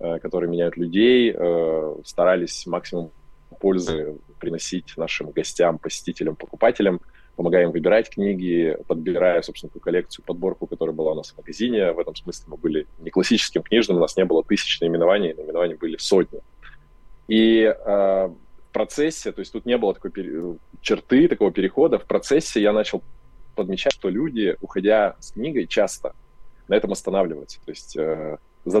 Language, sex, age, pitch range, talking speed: Russian, male, 20-39, 85-115 Hz, 150 wpm